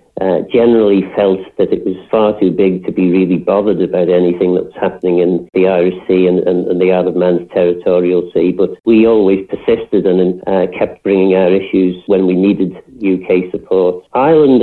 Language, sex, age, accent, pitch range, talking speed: English, male, 50-69, British, 95-110 Hz, 185 wpm